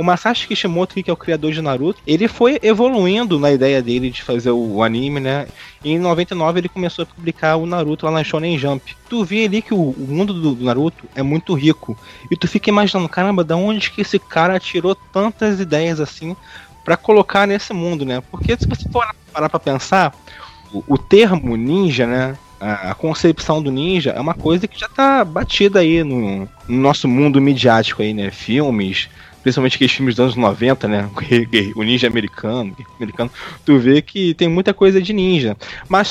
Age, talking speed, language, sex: 20-39, 195 wpm, Portuguese, male